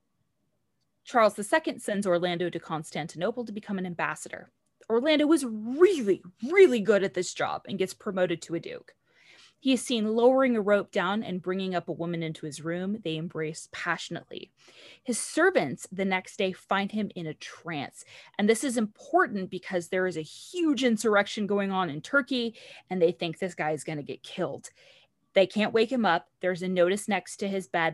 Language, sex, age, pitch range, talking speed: English, female, 20-39, 170-230 Hz, 190 wpm